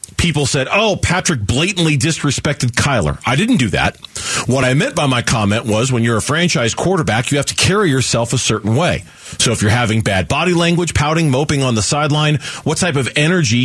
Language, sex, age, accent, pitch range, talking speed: English, male, 40-59, American, 110-150 Hz, 205 wpm